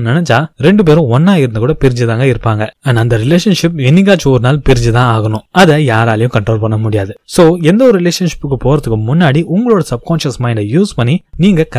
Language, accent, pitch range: Tamil, native, 120-170 Hz